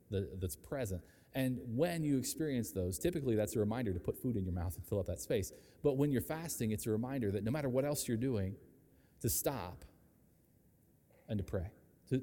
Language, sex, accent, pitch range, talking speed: English, male, American, 95-125 Hz, 205 wpm